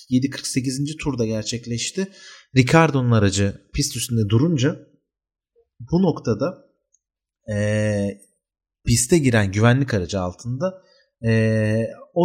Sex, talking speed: male, 90 wpm